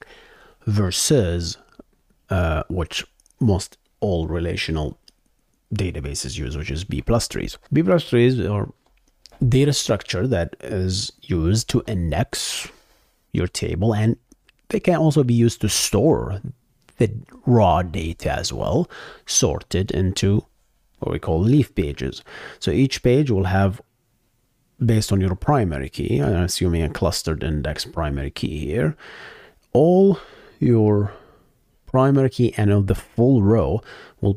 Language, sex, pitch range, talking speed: English, male, 90-120 Hz, 130 wpm